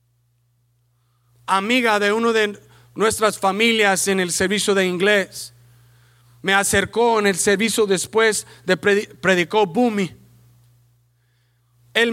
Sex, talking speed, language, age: male, 105 wpm, English, 40-59